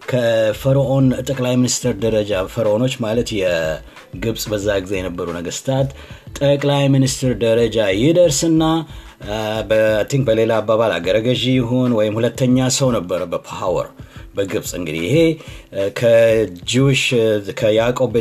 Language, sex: Amharic, male